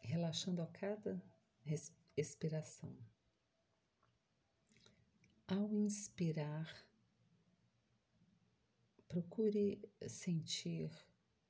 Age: 40-59